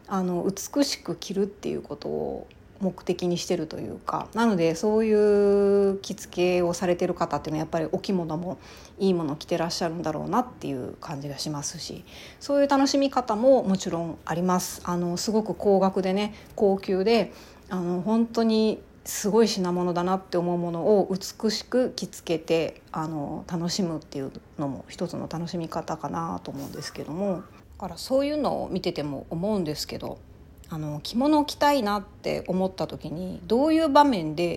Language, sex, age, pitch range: Japanese, female, 30-49, 165-215 Hz